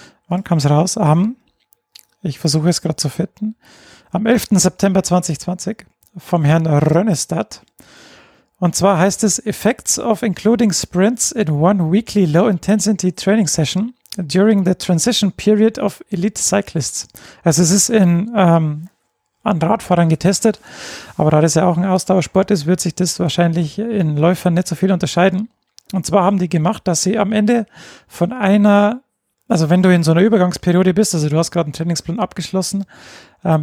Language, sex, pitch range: German, male, 175-210 Hz